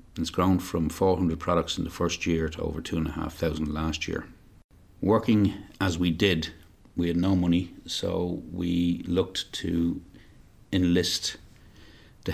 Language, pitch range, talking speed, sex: English, 85-95 Hz, 155 wpm, male